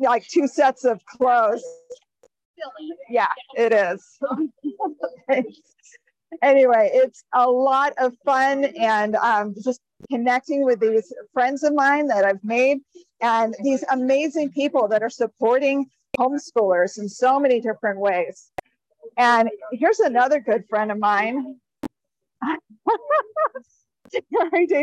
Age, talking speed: 40-59, 115 wpm